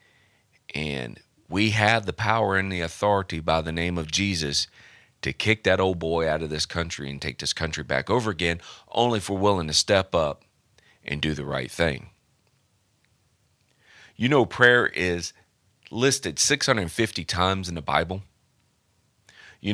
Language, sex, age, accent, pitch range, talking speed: English, male, 40-59, American, 90-115 Hz, 160 wpm